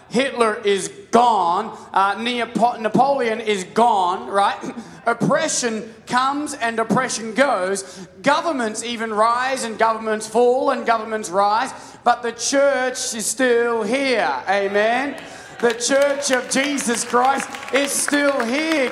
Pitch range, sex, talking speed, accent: 235-295 Hz, male, 115 wpm, Australian